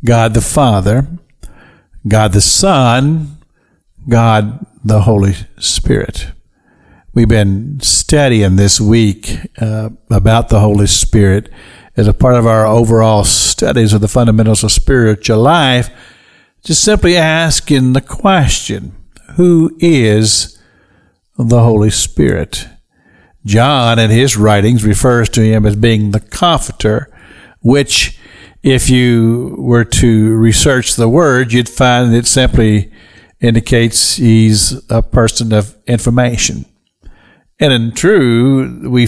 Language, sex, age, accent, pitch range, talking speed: English, male, 60-79, American, 110-130 Hz, 115 wpm